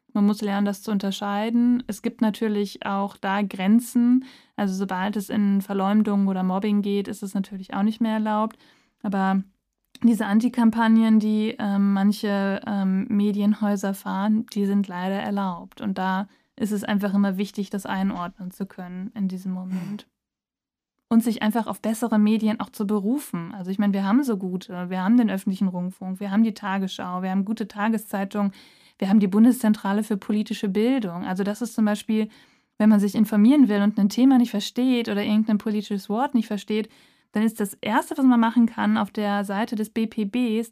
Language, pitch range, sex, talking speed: German, 200-230 Hz, female, 185 wpm